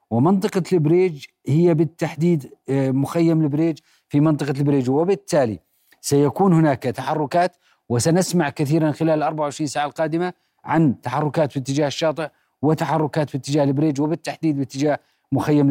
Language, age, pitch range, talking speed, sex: Arabic, 40-59, 140-165 Hz, 120 wpm, male